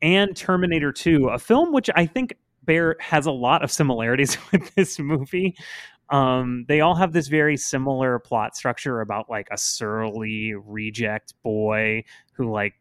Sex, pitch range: male, 110-165 Hz